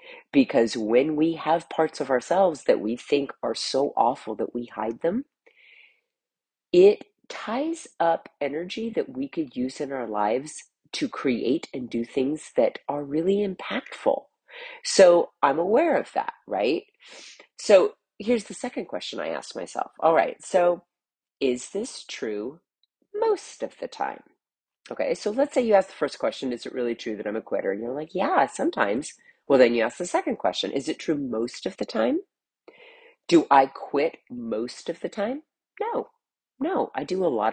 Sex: female